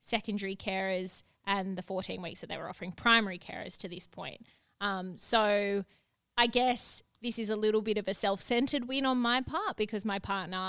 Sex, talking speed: female, 190 wpm